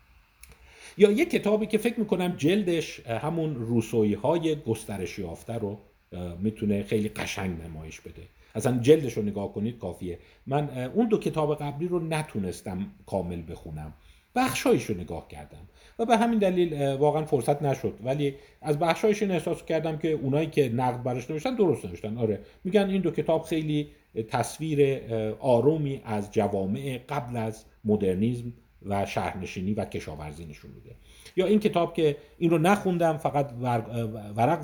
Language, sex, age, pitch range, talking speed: Persian, male, 50-69, 105-150 Hz, 145 wpm